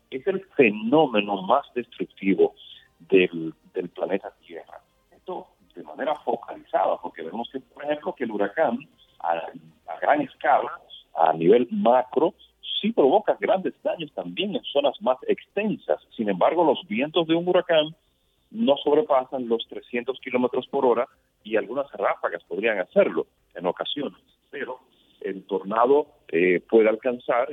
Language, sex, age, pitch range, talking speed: Spanish, male, 40-59, 100-165 Hz, 140 wpm